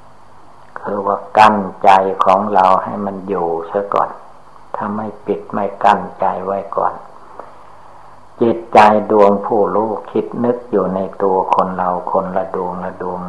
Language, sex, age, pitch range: Thai, male, 60-79, 90-105 Hz